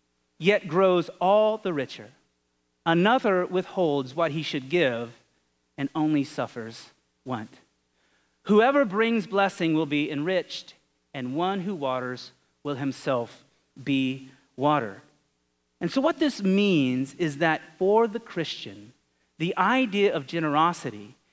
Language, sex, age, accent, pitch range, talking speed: English, male, 30-49, American, 130-195 Hz, 120 wpm